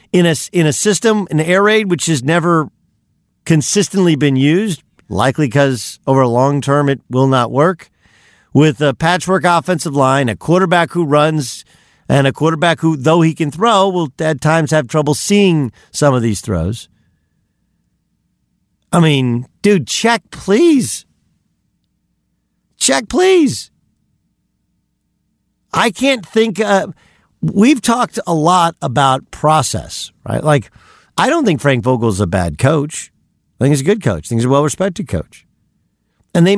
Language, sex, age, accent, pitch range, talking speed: English, male, 50-69, American, 125-175 Hz, 150 wpm